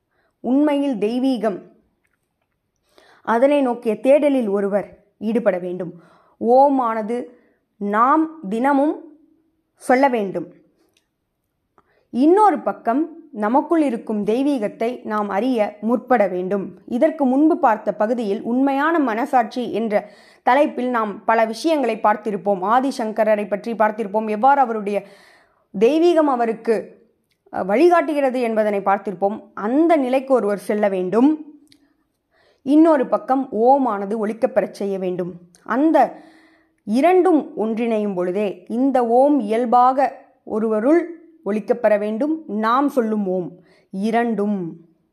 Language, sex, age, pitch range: Tamil, female, 20-39, 205-280 Hz